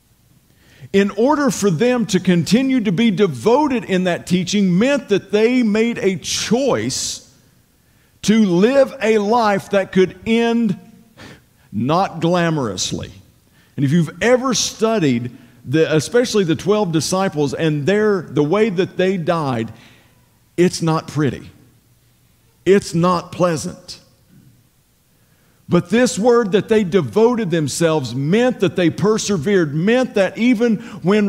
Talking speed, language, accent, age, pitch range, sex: 125 wpm, English, American, 50-69, 175-225 Hz, male